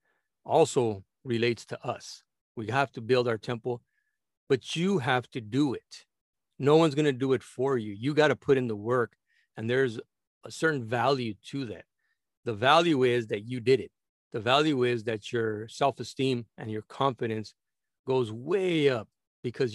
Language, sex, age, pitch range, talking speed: English, male, 40-59, 115-140 Hz, 180 wpm